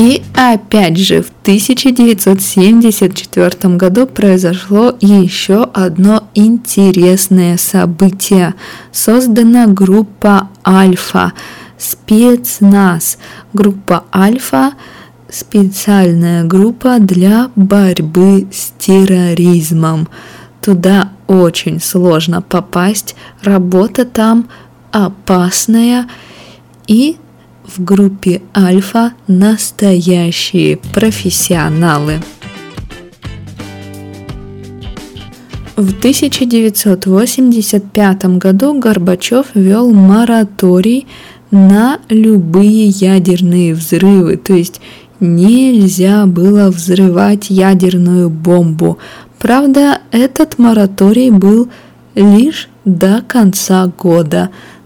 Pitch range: 180-220 Hz